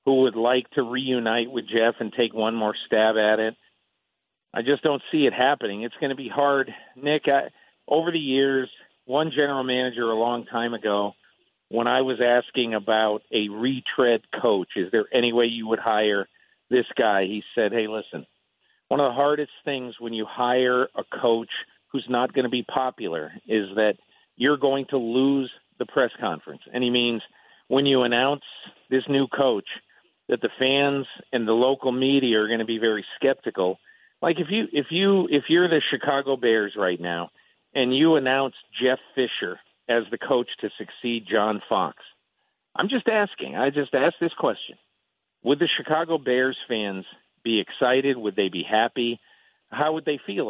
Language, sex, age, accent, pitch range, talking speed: English, male, 50-69, American, 115-140 Hz, 180 wpm